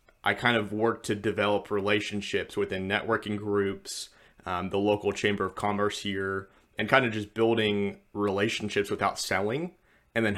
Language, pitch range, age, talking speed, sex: English, 100-110 Hz, 20-39, 155 wpm, male